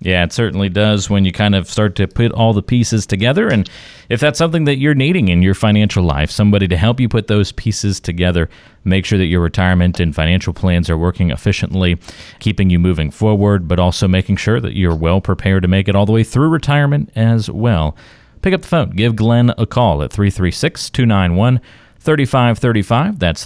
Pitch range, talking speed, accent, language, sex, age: 85-110 Hz, 205 wpm, American, English, male, 40-59